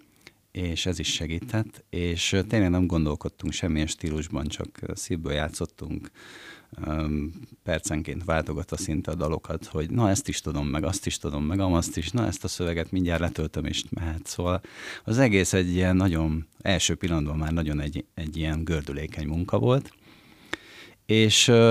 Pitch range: 80-100 Hz